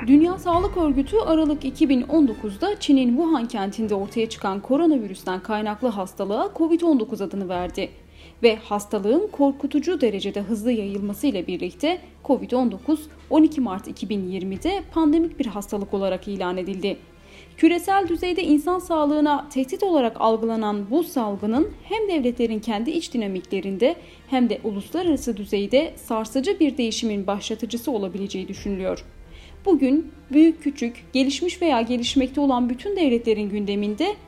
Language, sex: Turkish, female